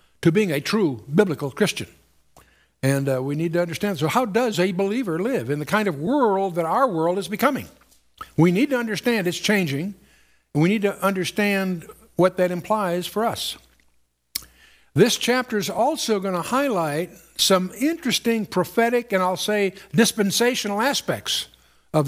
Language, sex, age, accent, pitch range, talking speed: English, male, 60-79, American, 150-200 Hz, 165 wpm